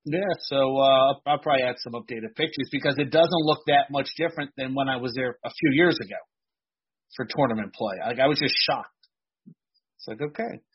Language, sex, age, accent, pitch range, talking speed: English, male, 40-59, American, 110-150 Hz, 200 wpm